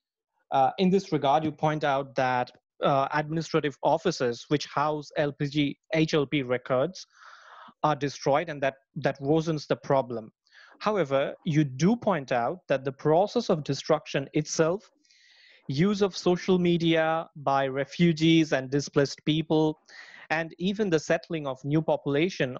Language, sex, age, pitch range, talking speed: English, male, 30-49, 145-175 Hz, 135 wpm